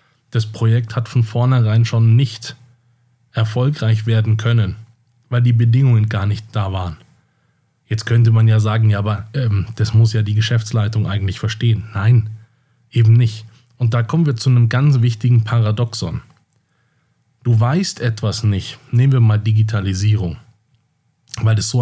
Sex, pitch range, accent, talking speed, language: male, 110-125 Hz, German, 150 wpm, German